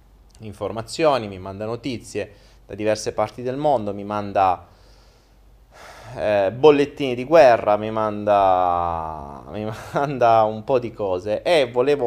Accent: native